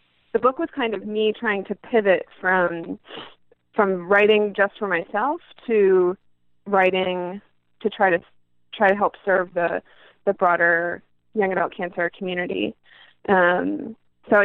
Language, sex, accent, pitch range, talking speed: English, female, American, 180-215 Hz, 135 wpm